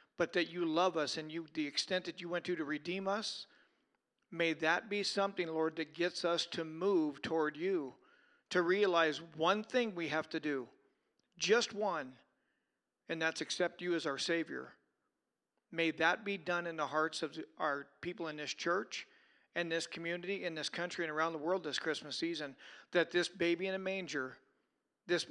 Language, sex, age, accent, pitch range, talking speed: English, male, 40-59, American, 155-180 Hz, 185 wpm